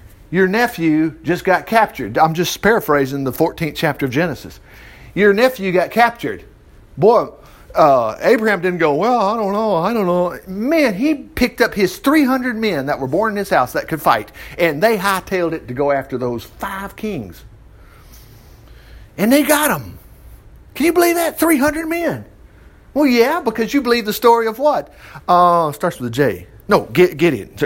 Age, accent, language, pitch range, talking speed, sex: 50-69, American, English, 145-215 Hz, 175 wpm, male